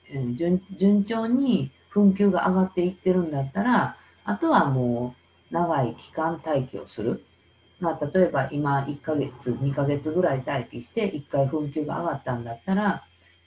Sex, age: female, 50-69